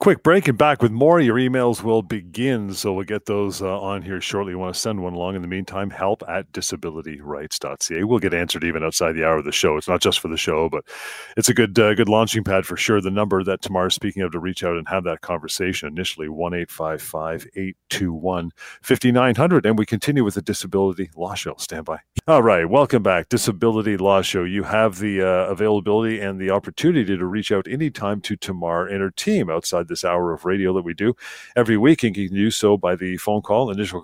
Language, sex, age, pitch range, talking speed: English, male, 40-59, 90-110 Hz, 225 wpm